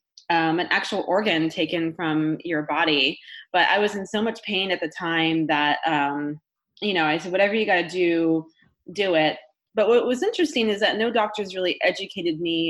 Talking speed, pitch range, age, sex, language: 200 wpm, 160-195 Hz, 20-39, female, English